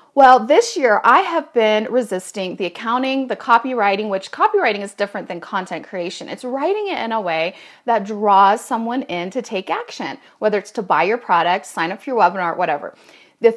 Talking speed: 195 wpm